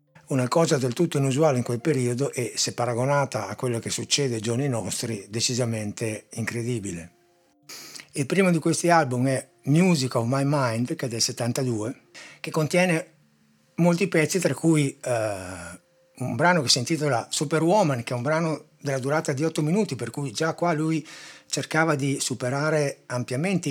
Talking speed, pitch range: 165 wpm, 120-155 Hz